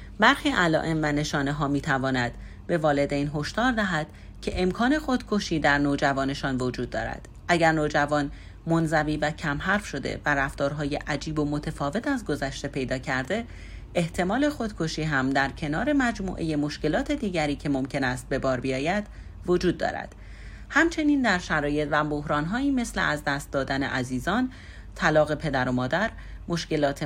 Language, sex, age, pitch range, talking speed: Persian, female, 40-59, 135-180 Hz, 145 wpm